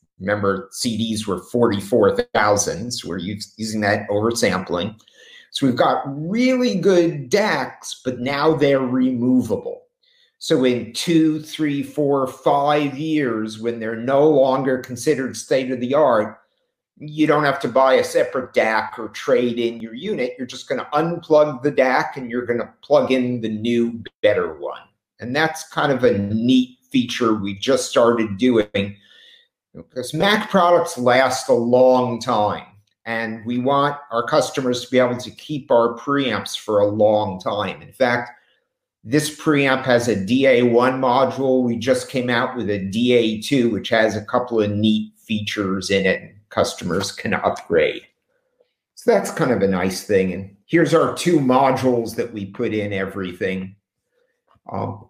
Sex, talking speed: male, 155 wpm